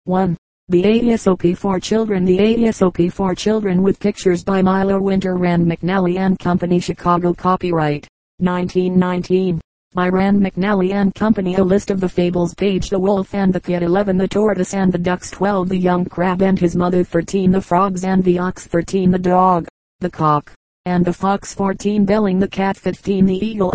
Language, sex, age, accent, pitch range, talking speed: English, female, 40-59, American, 180-195 Hz, 180 wpm